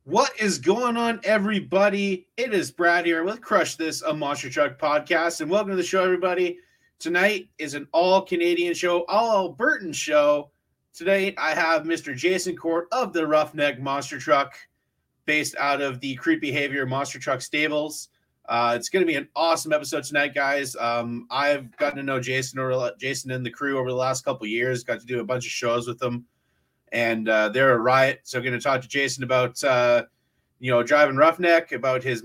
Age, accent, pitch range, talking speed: 30-49, American, 130-175 Hz, 195 wpm